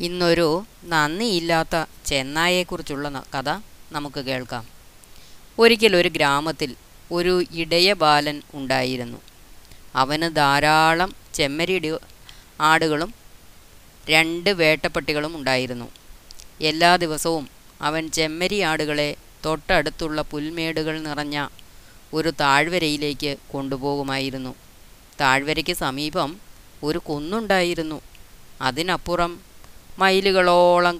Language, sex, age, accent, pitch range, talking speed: Malayalam, female, 20-39, native, 135-170 Hz, 70 wpm